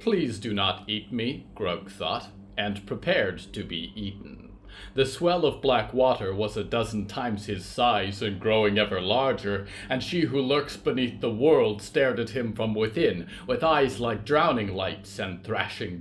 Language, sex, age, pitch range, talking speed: English, male, 30-49, 100-125 Hz, 170 wpm